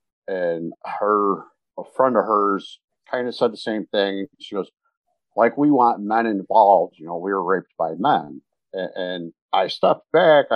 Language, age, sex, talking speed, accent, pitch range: English, 50-69, male, 175 wpm, American, 95-125 Hz